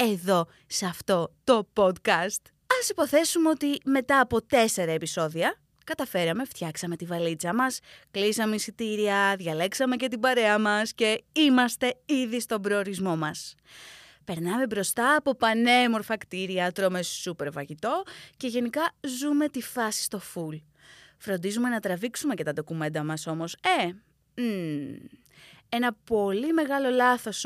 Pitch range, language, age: 180-260 Hz, Greek, 20-39